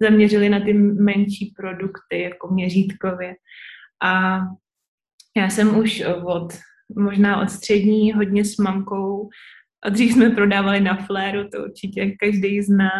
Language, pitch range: Czech, 195-210 Hz